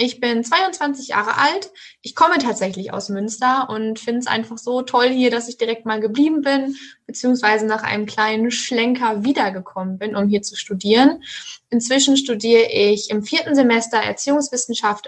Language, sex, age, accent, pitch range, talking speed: German, female, 10-29, German, 210-255 Hz, 165 wpm